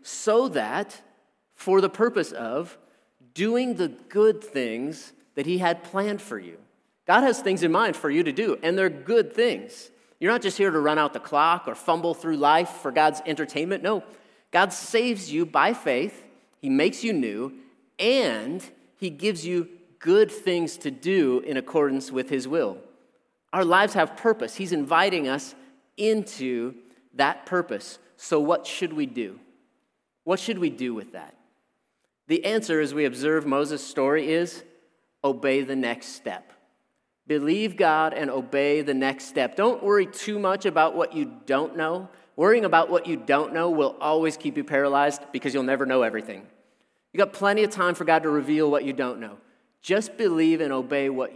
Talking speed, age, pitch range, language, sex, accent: 175 wpm, 30-49, 145-210 Hz, English, male, American